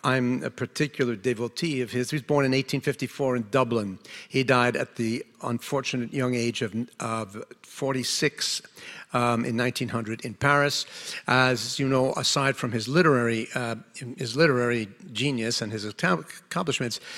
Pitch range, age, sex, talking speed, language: 115-135 Hz, 50-69, male, 145 wpm, English